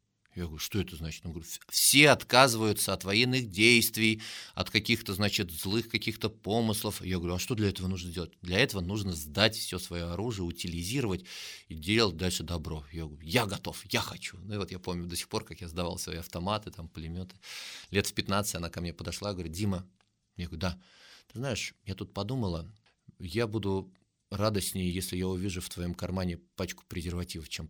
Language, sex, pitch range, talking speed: Russian, male, 85-110 Hz, 190 wpm